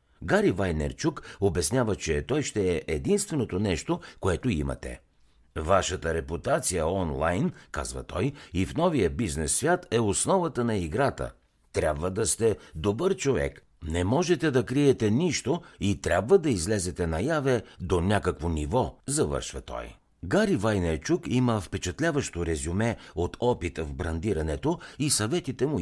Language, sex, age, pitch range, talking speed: Bulgarian, male, 60-79, 80-125 Hz, 130 wpm